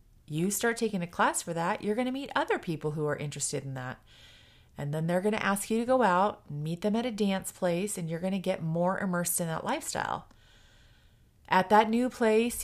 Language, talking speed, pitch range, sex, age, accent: English, 230 wpm, 160-215 Hz, female, 30-49, American